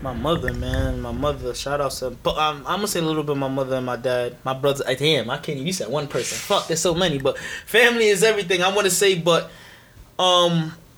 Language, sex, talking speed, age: English, male, 255 wpm, 20-39